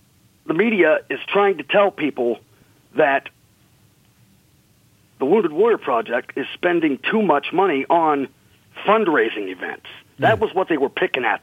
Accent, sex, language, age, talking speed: American, male, English, 50-69, 140 wpm